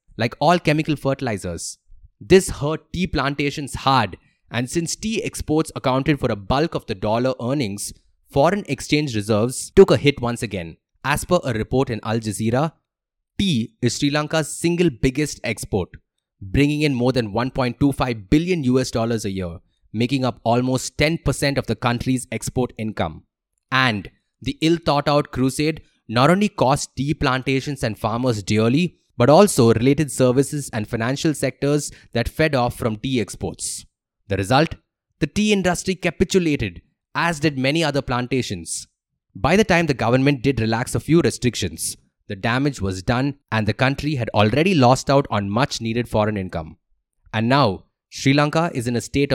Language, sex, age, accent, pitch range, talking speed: English, male, 20-39, Indian, 110-145 Hz, 160 wpm